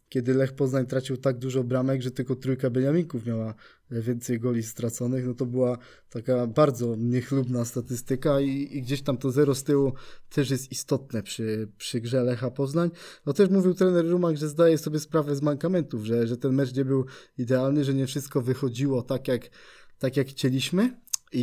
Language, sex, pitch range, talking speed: Polish, male, 130-155 Hz, 180 wpm